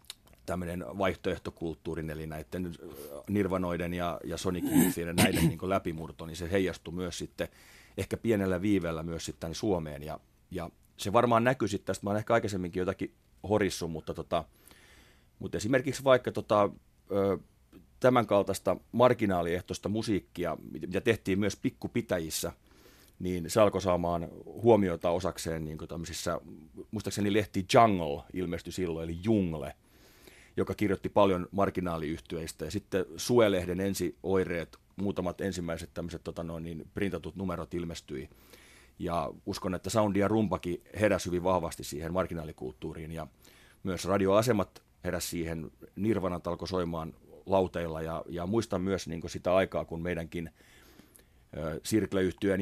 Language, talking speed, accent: Finnish, 125 wpm, native